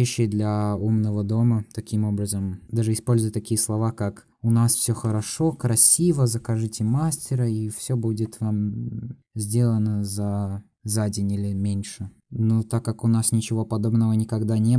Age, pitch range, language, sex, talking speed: 20-39, 100-115 Hz, Russian, male, 145 wpm